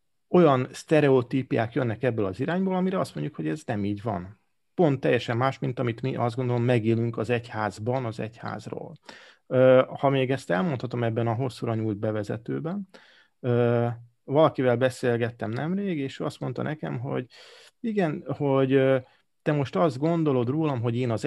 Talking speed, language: 150 wpm, Hungarian